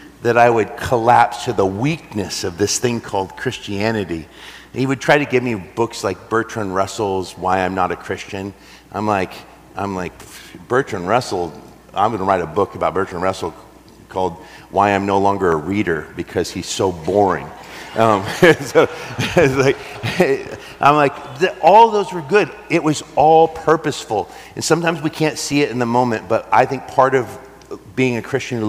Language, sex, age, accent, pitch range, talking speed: English, male, 50-69, American, 105-140 Hz, 175 wpm